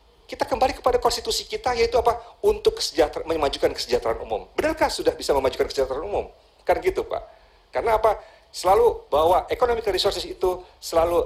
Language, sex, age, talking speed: Indonesian, male, 40-59, 155 wpm